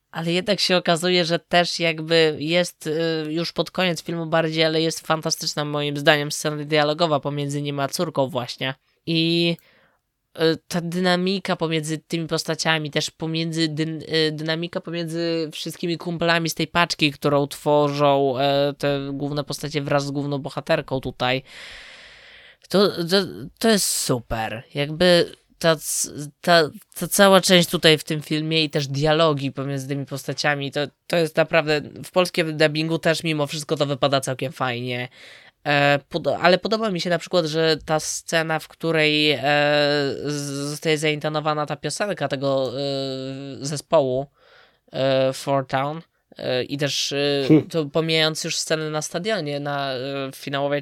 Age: 20-39